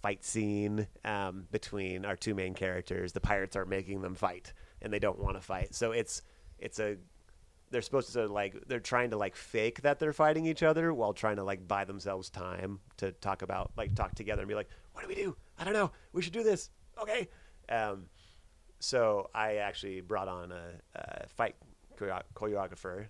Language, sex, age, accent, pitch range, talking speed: English, male, 30-49, American, 95-115 Hz, 205 wpm